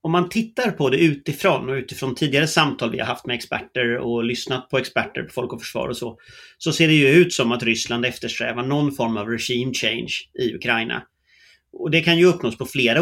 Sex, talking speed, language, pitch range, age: male, 220 wpm, English, 120-155 Hz, 30-49